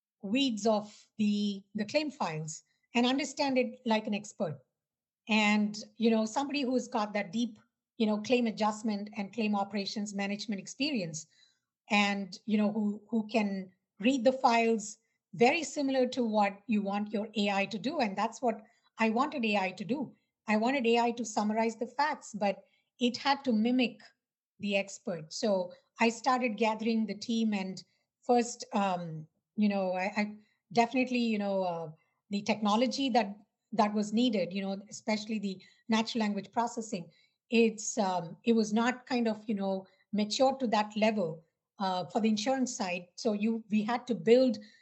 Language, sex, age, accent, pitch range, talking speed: English, female, 50-69, Indian, 200-235 Hz, 165 wpm